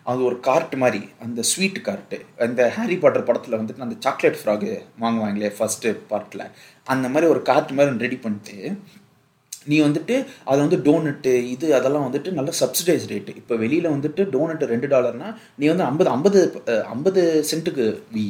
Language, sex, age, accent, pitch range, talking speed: Tamil, male, 30-49, native, 120-160 Hz, 165 wpm